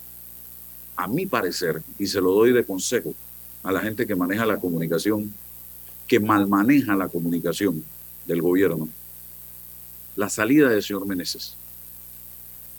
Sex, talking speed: male, 130 wpm